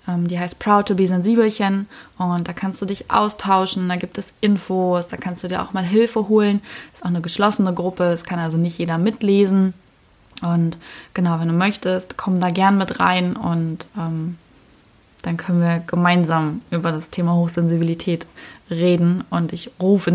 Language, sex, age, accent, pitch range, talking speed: German, female, 20-39, German, 175-200 Hz, 175 wpm